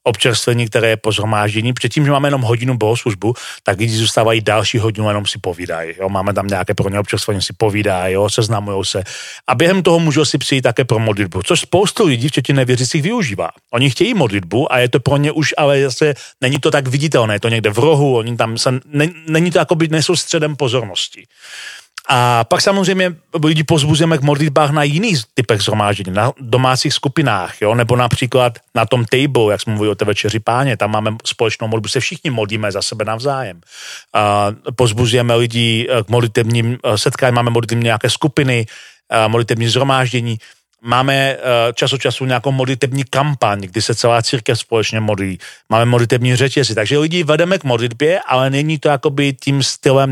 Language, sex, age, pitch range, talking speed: Slovak, male, 40-59, 110-140 Hz, 180 wpm